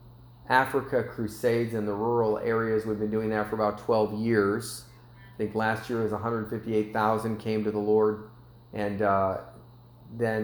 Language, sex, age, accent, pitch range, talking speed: English, male, 30-49, American, 105-120 Hz, 180 wpm